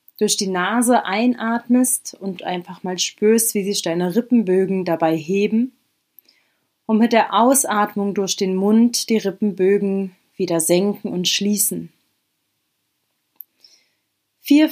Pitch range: 185-235 Hz